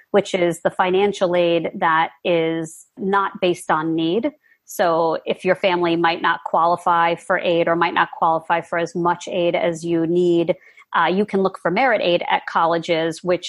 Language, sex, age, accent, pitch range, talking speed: English, female, 40-59, American, 170-200 Hz, 180 wpm